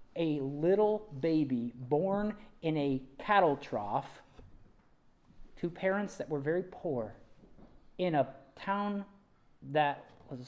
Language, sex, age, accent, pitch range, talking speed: English, male, 40-59, American, 125-160 Hz, 115 wpm